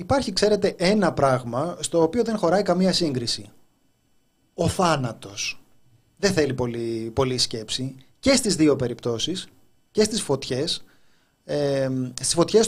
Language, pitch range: Greek, 130-170 Hz